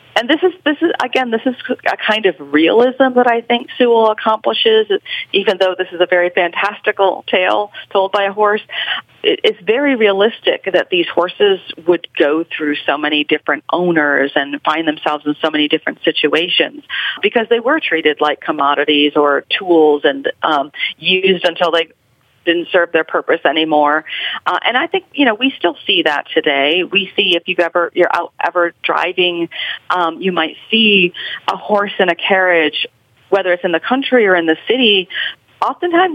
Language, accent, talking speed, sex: English, American, 185 wpm, female